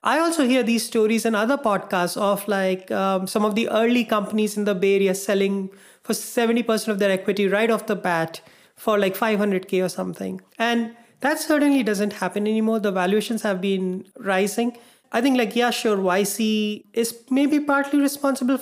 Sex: male